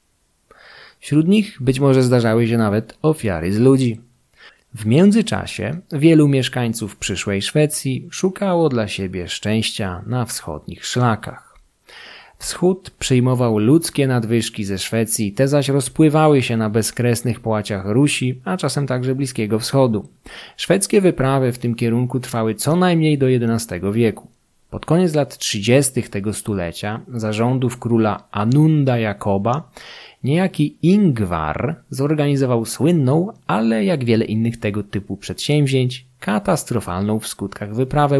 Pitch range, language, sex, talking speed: 105-145 Hz, Polish, male, 125 wpm